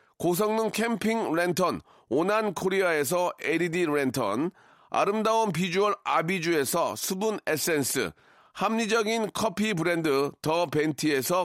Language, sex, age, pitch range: Korean, male, 40-59, 170-215 Hz